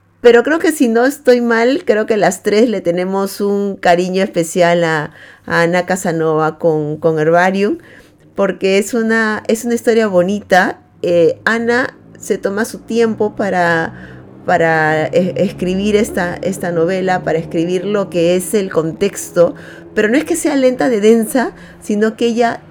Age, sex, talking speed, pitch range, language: 30-49, female, 160 wpm, 170-225 Hz, Spanish